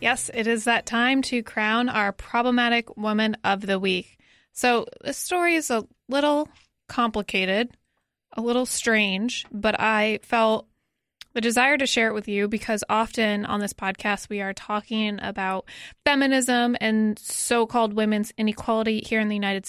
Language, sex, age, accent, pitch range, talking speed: English, female, 20-39, American, 210-250 Hz, 155 wpm